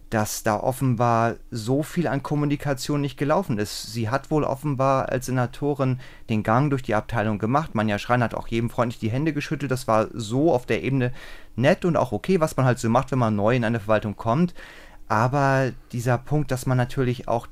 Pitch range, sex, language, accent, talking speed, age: 110-135 Hz, male, German, German, 210 wpm, 30-49